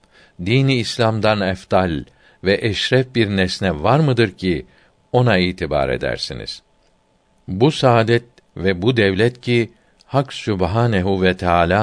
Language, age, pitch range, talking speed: Turkish, 50-69, 90-120 Hz, 115 wpm